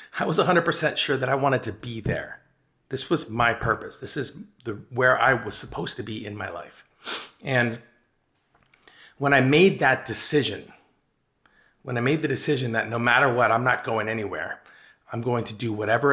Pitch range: 110-130 Hz